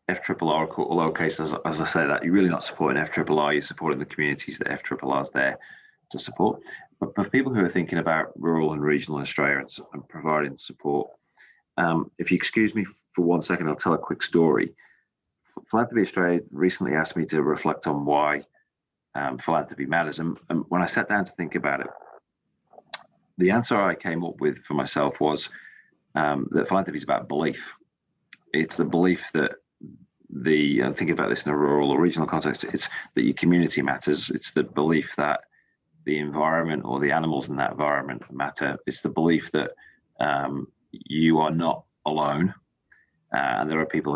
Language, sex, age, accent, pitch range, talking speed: English, male, 30-49, British, 75-85 Hz, 180 wpm